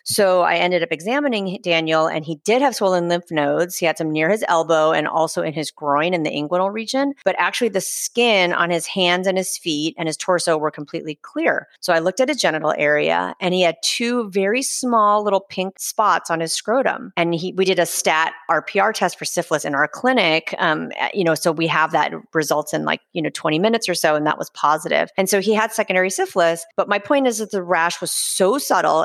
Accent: American